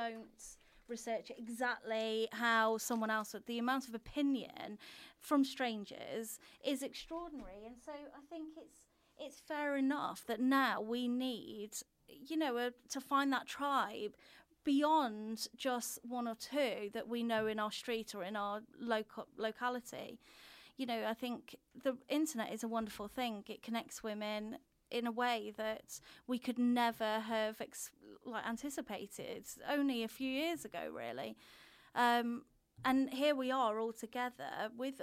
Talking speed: 150 wpm